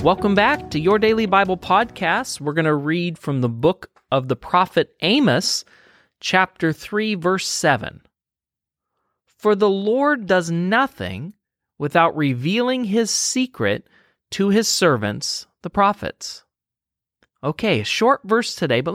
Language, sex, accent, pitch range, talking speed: English, male, American, 155-220 Hz, 135 wpm